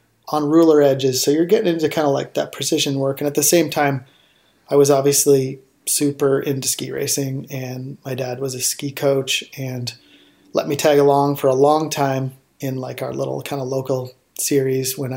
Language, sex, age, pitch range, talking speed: English, male, 30-49, 130-145 Hz, 200 wpm